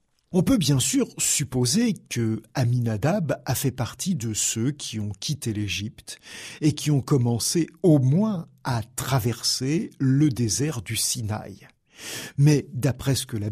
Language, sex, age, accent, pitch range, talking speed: French, male, 50-69, French, 120-165 Hz, 145 wpm